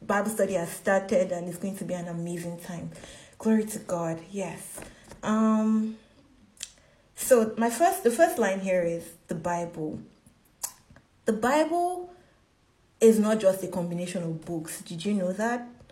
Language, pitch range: English, 180-215 Hz